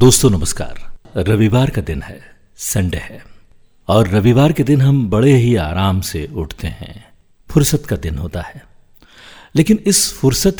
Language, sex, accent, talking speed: Hindi, male, native, 155 wpm